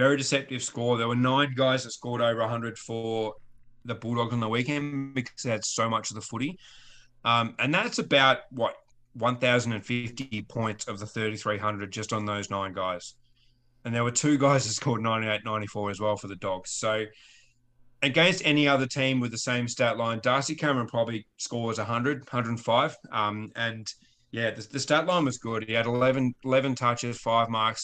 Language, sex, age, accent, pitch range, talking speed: English, male, 30-49, Australian, 110-130 Hz, 190 wpm